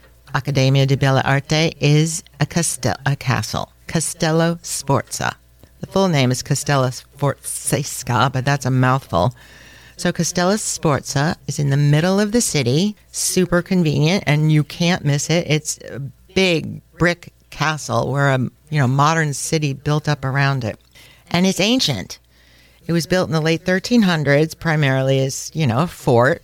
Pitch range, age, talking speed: 135-165 Hz, 50-69, 155 wpm